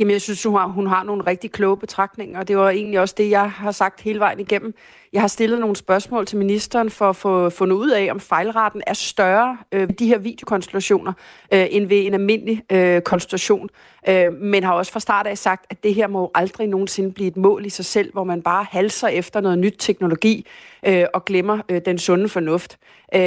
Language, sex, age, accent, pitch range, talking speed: Danish, female, 40-59, native, 185-210 Hz, 205 wpm